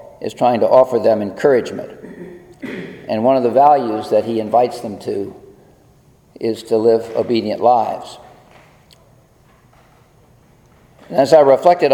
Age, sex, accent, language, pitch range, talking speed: 50-69, male, American, English, 115-140 Hz, 125 wpm